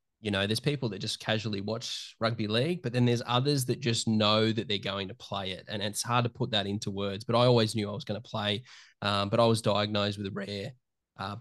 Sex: male